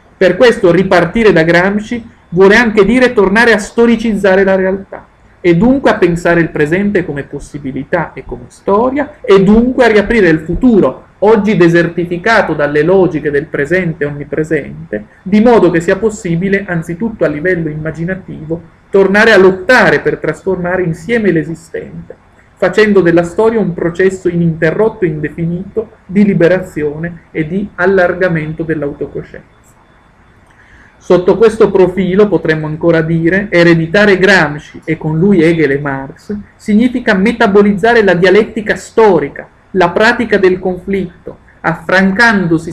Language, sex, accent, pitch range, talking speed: Italian, male, native, 165-205 Hz, 130 wpm